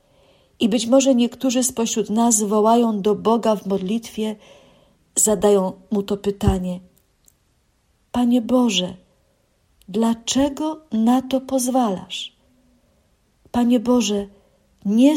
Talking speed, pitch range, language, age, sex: 95 wpm, 195-235 Hz, Polish, 50-69, female